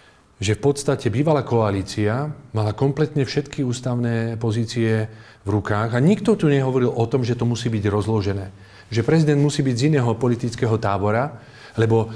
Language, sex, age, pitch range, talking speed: Slovak, male, 40-59, 105-135 Hz, 160 wpm